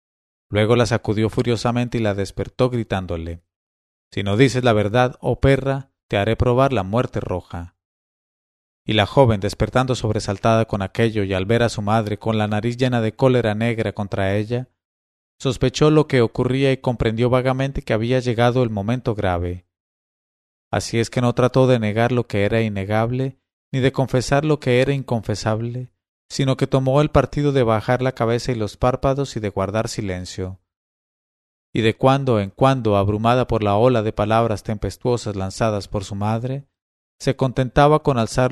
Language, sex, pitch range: English, male, 100-125 Hz